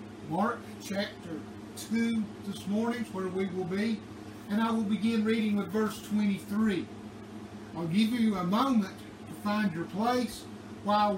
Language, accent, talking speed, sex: English, American, 150 wpm, male